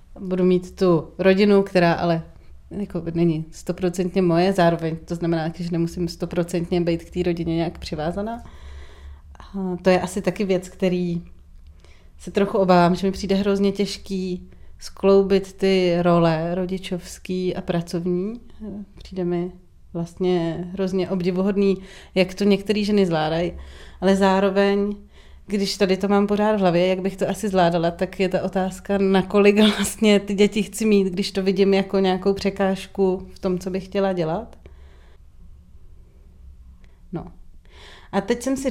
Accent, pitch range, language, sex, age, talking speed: native, 170-195 Hz, Czech, female, 30-49, 145 wpm